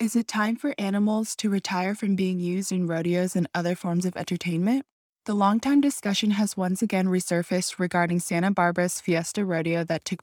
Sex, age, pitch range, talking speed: female, 20-39, 175-205 Hz, 180 wpm